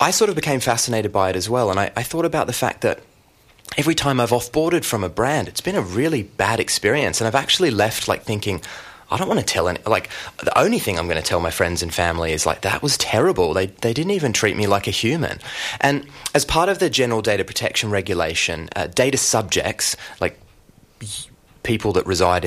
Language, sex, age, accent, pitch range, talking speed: English, male, 30-49, Australian, 95-130 Hz, 225 wpm